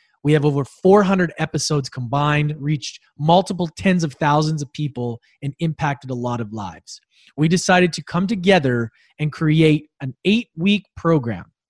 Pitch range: 135-180 Hz